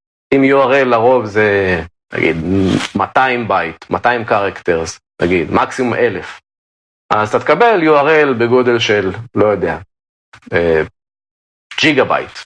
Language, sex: Hebrew, male